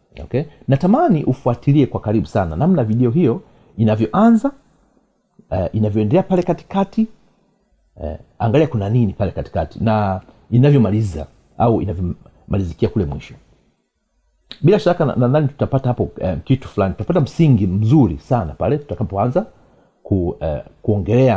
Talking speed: 105 wpm